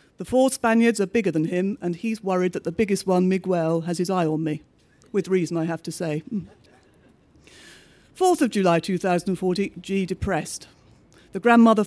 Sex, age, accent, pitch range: female, 50-69, British, 180-220 Hz